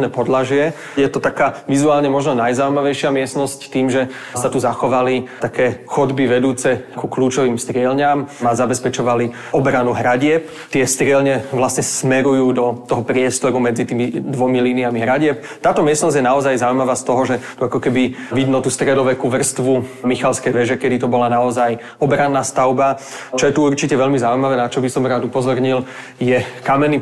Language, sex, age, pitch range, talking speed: Slovak, male, 30-49, 125-135 Hz, 160 wpm